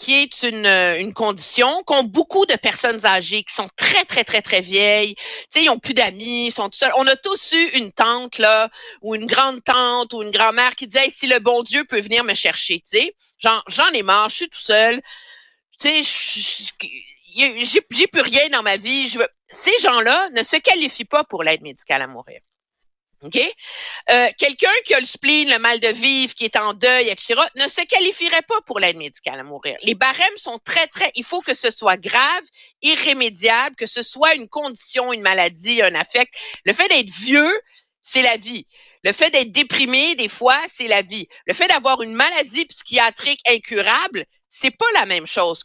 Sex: female